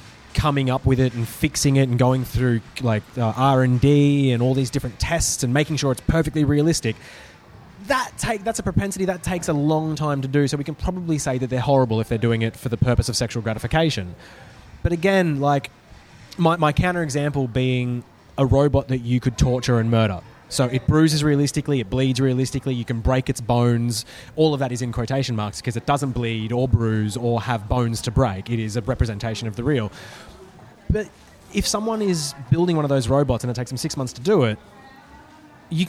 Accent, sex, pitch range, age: Australian, male, 120-150 Hz, 20-39